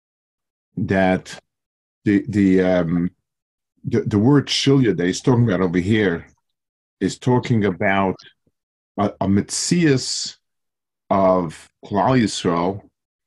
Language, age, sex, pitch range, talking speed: English, 50-69, male, 95-125 Hz, 100 wpm